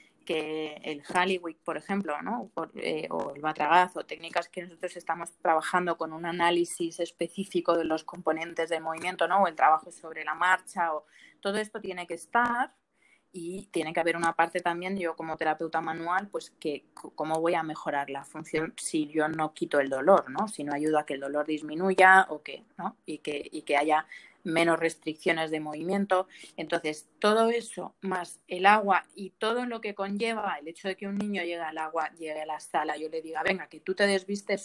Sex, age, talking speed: female, 20-39, 205 wpm